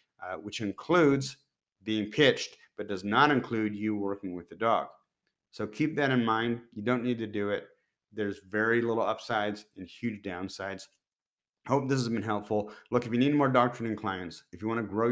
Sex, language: male, English